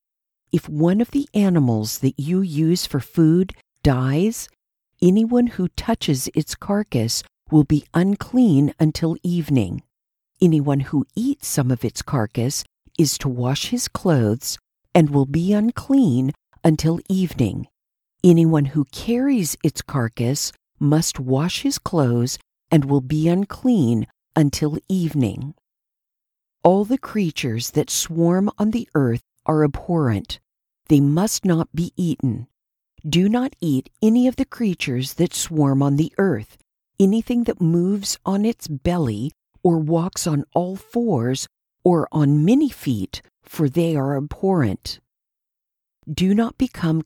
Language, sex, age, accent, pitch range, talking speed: English, female, 50-69, American, 140-195 Hz, 130 wpm